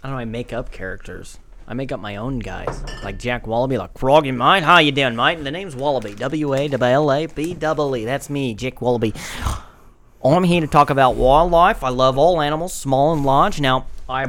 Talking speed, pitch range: 195 wpm, 115-145 Hz